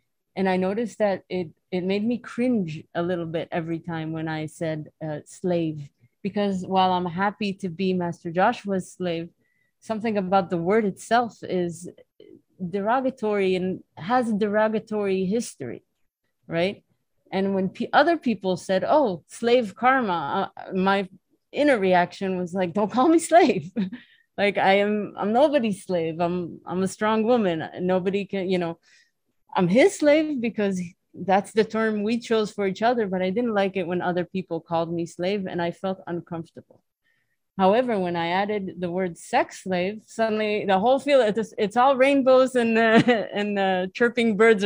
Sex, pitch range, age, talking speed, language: female, 180-225 Hz, 30-49, 165 wpm, English